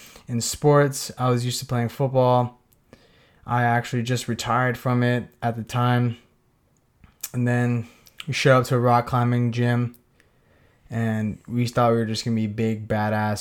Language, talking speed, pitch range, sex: English, 170 wpm, 115-130 Hz, male